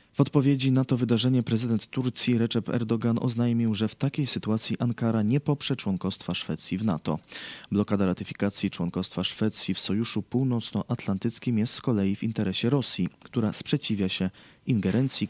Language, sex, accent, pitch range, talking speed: Polish, male, native, 100-125 Hz, 150 wpm